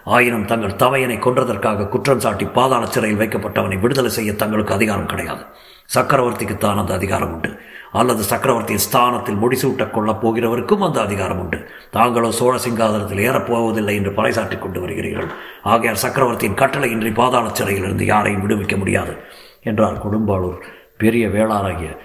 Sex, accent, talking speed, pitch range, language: male, native, 115 wpm, 95-115 Hz, Tamil